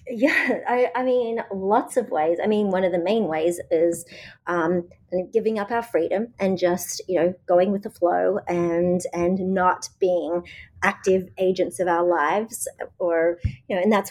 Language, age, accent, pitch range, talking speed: English, 30-49, Australian, 175-220 Hz, 180 wpm